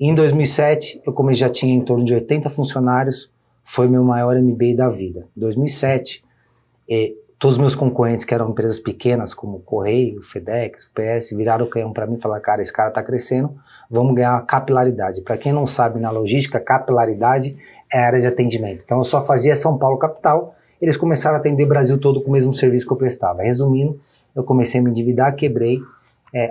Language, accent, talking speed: Portuguese, Brazilian, 210 wpm